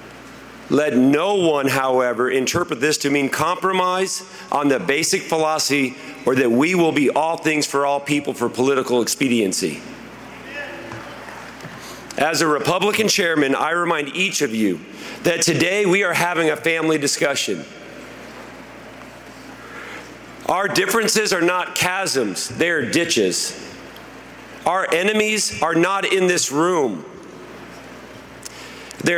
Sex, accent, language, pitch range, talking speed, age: male, American, English, 145-190 Hz, 120 wpm, 40-59